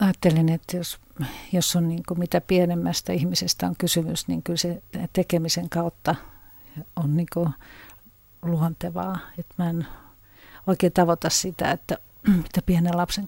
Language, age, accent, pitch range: Finnish, 50-69, native, 160-180 Hz